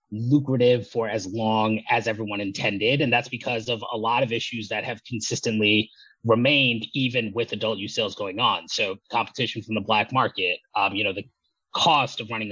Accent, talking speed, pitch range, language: American, 185 wpm, 110-130 Hz, English